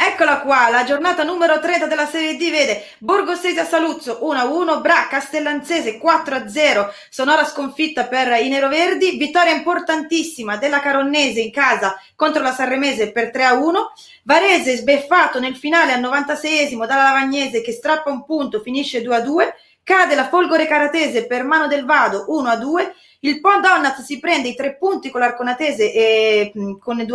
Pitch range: 235-310 Hz